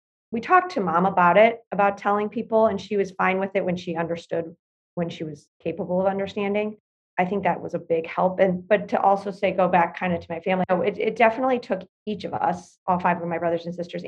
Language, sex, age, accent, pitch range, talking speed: English, female, 30-49, American, 175-205 Hz, 245 wpm